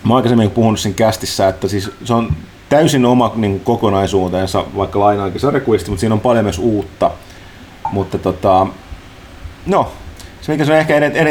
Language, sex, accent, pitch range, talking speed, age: Finnish, male, native, 95-120 Hz, 170 wpm, 30-49